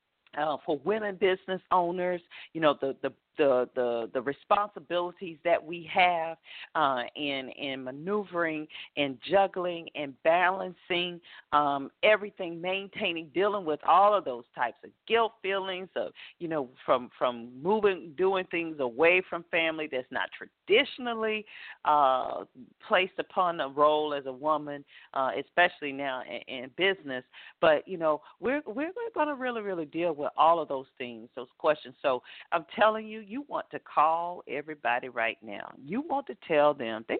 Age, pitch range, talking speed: 40-59, 150-235 Hz, 155 wpm